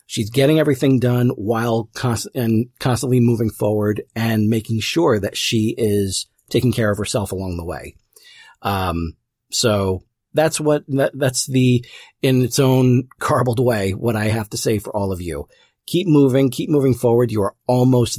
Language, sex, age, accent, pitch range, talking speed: English, male, 40-59, American, 105-130 Hz, 180 wpm